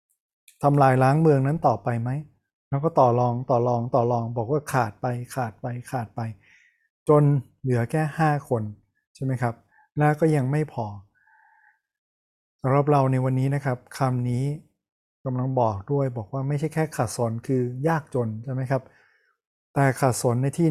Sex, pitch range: male, 120-140 Hz